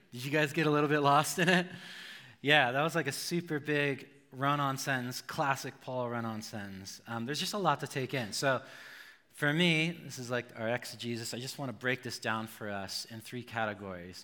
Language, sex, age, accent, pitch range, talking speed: English, male, 30-49, American, 115-165 Hz, 215 wpm